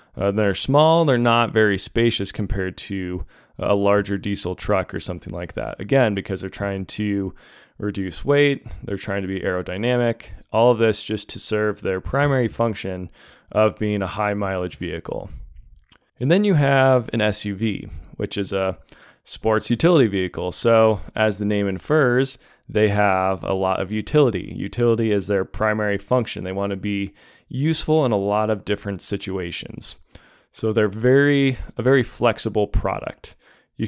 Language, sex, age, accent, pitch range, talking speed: English, male, 20-39, American, 100-120 Hz, 160 wpm